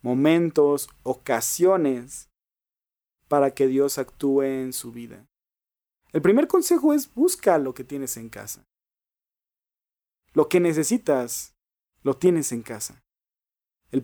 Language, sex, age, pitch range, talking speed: Spanish, male, 30-49, 125-190 Hz, 115 wpm